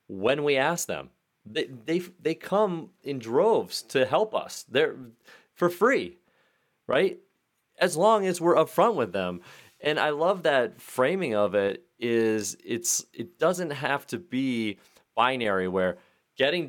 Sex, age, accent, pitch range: male, 30-49, American, 105-155 Hz